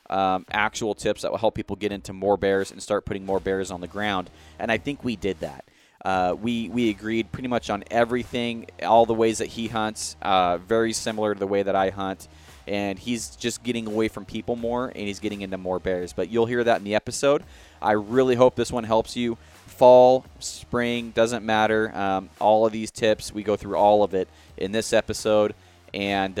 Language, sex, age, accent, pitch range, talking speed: English, male, 20-39, American, 100-120 Hz, 215 wpm